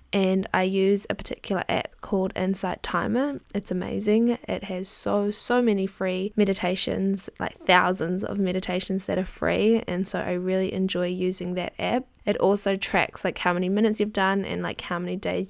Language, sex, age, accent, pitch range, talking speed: English, female, 10-29, Australian, 185-220 Hz, 180 wpm